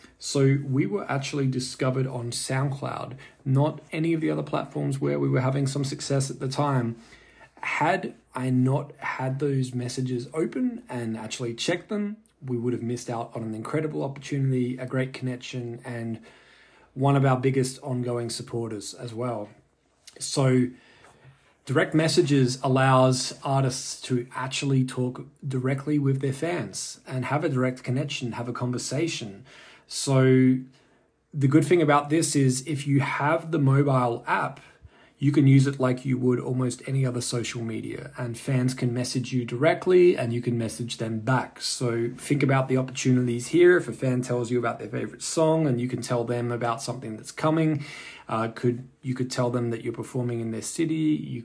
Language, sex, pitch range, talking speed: English, male, 120-140 Hz, 175 wpm